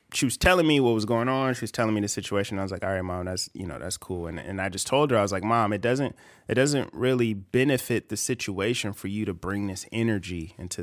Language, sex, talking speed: English, male, 275 wpm